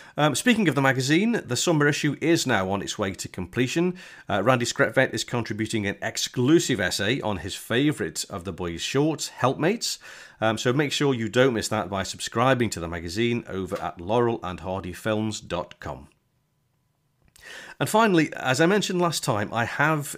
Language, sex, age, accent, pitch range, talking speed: English, male, 40-59, British, 100-135 Hz, 165 wpm